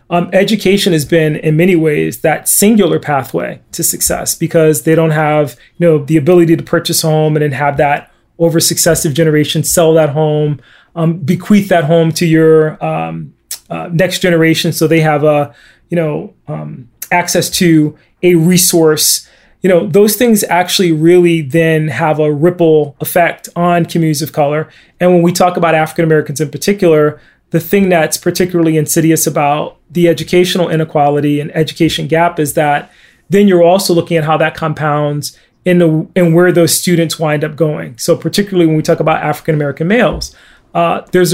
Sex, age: male, 30-49